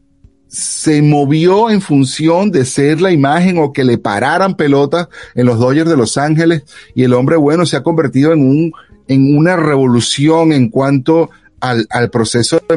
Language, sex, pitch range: Spanish, male, 110-155 Hz